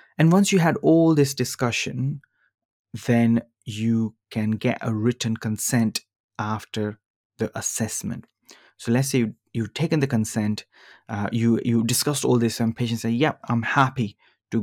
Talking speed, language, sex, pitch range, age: 150 wpm, English, male, 110-125 Hz, 20-39